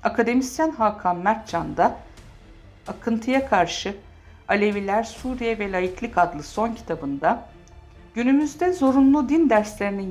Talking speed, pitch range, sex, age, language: 95 wpm, 160-240 Hz, female, 50-69, Turkish